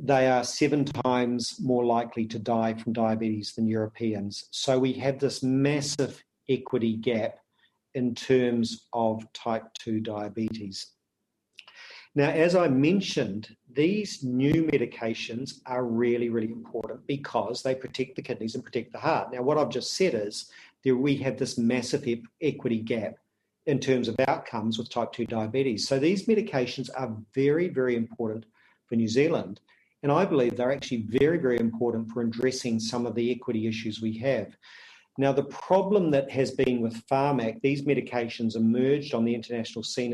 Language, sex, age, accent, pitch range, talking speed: English, male, 40-59, Australian, 115-135 Hz, 160 wpm